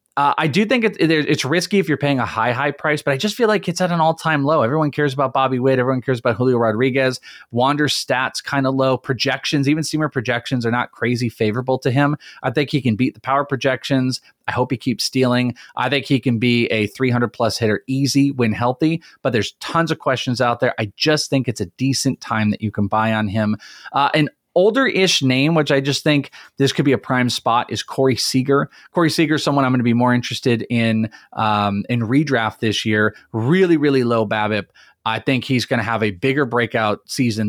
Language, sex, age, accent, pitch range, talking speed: English, male, 30-49, American, 110-145 Hz, 225 wpm